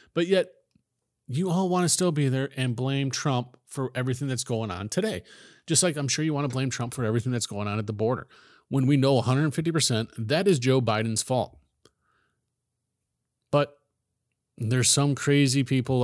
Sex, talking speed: male, 185 wpm